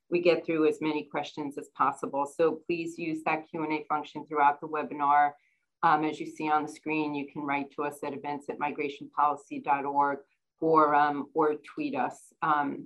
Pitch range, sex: 145-170 Hz, female